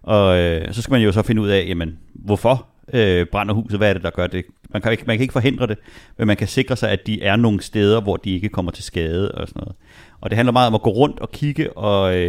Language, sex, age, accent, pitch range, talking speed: Danish, male, 30-49, native, 95-120 Hz, 255 wpm